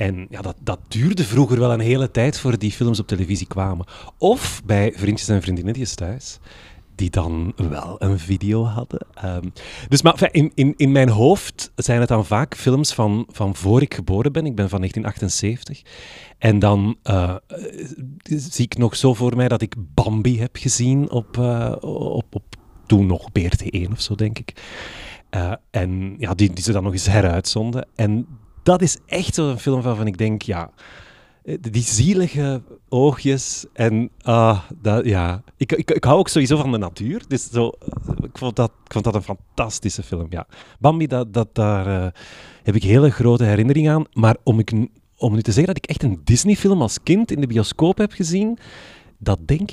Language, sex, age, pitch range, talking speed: Dutch, male, 30-49, 100-135 Hz, 190 wpm